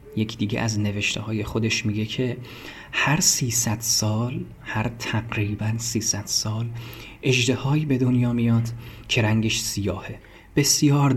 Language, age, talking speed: Persian, 30-49, 125 wpm